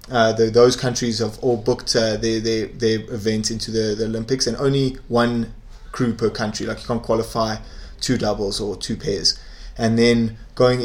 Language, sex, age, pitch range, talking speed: English, male, 20-39, 110-125 Hz, 190 wpm